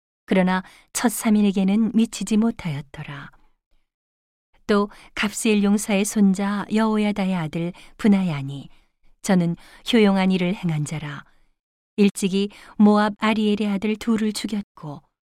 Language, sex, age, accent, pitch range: Korean, female, 40-59, native, 170-215 Hz